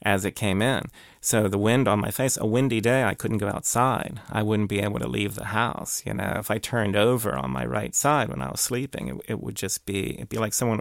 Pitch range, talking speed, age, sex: 105-125 Hz, 260 wpm, 30-49, male